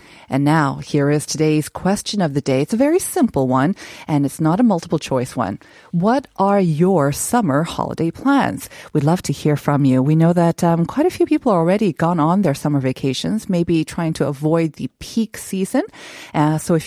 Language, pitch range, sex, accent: Korean, 150-215 Hz, female, American